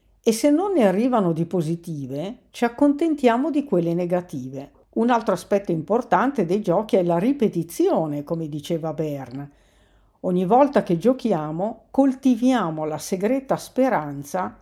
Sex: female